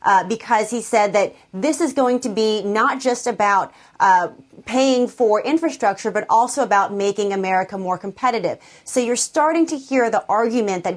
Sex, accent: female, American